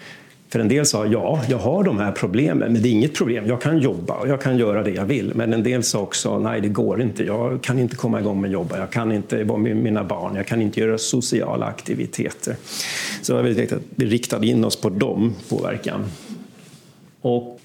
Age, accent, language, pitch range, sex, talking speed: 50-69, Swedish, Danish, 110-135 Hz, male, 220 wpm